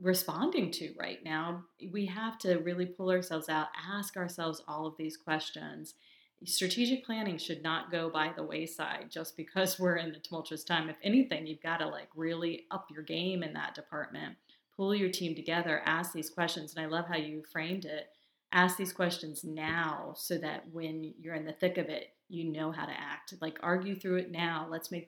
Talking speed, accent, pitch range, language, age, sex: 200 wpm, American, 160-180 Hz, English, 30-49, female